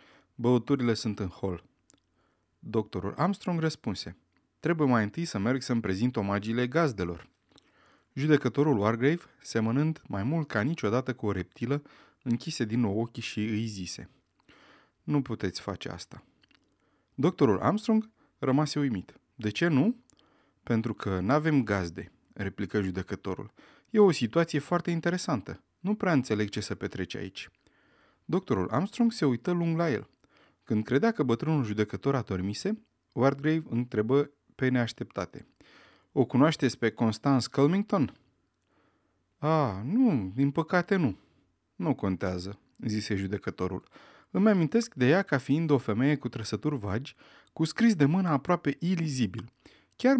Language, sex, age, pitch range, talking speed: Romanian, male, 30-49, 105-155 Hz, 135 wpm